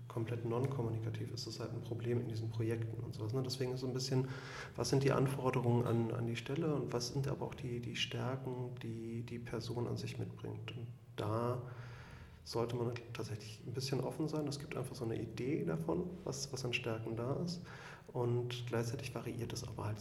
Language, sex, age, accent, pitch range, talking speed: German, male, 40-59, German, 115-135 Hz, 200 wpm